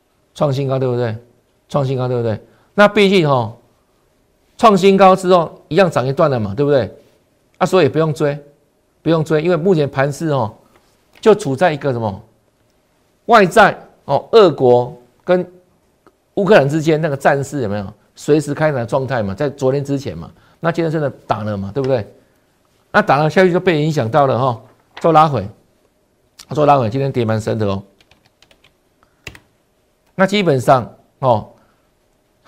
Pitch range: 120-175 Hz